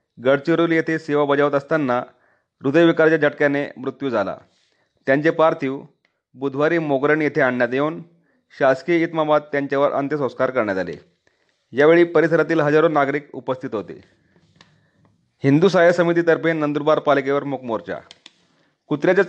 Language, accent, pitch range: Marathi, native, 140-165 Hz